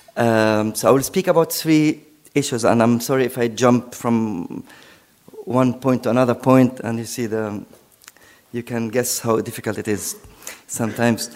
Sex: male